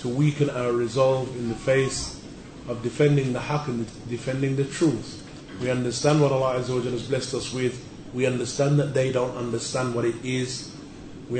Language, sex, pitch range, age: English, male, 125-145 Hz, 30-49